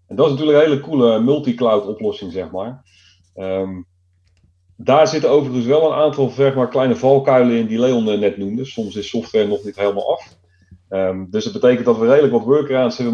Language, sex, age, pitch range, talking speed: Dutch, male, 40-59, 95-140 Hz, 200 wpm